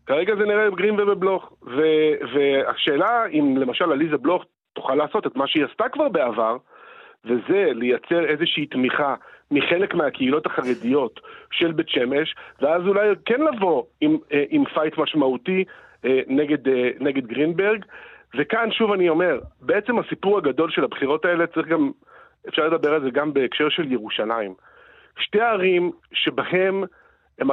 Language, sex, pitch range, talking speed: Hebrew, male, 150-220 Hz, 135 wpm